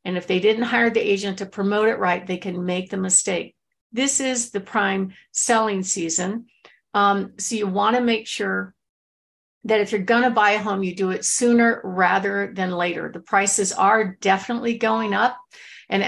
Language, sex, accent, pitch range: English, female, American, 195-235 Hz